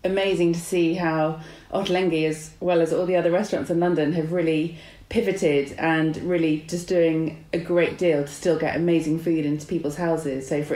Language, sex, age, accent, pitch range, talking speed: English, female, 30-49, British, 145-170 Hz, 190 wpm